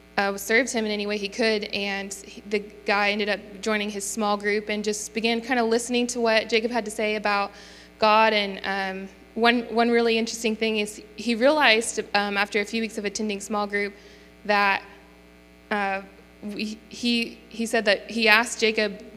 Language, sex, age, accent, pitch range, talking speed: English, female, 20-39, American, 205-225 Hz, 185 wpm